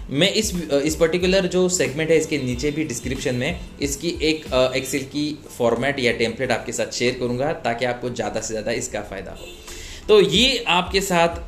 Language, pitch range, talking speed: Hindi, 115-145 Hz, 185 wpm